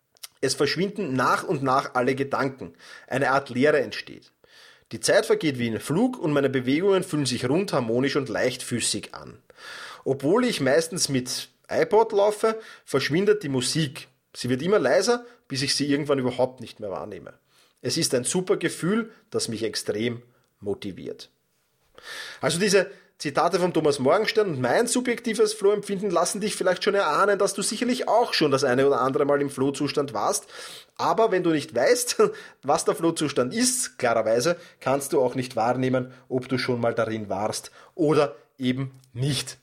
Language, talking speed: German, 165 wpm